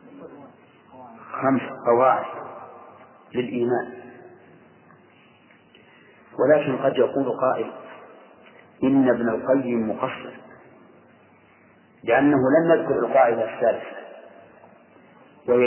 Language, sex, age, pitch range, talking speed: Arabic, male, 50-69, 130-150 Hz, 65 wpm